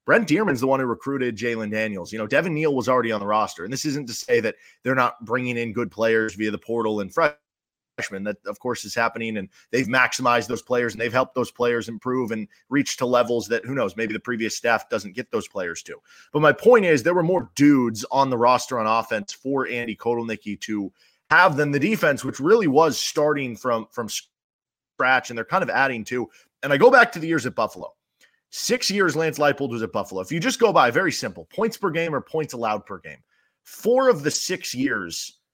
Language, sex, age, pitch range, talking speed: English, male, 30-49, 115-160 Hz, 230 wpm